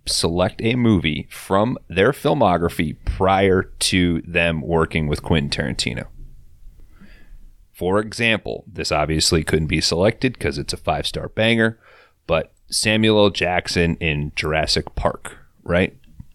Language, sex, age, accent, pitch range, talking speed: English, male, 30-49, American, 80-105 Hz, 120 wpm